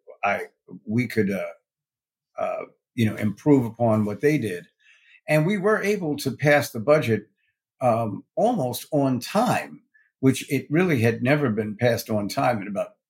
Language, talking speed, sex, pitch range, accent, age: English, 160 wpm, male, 115-160 Hz, American, 50-69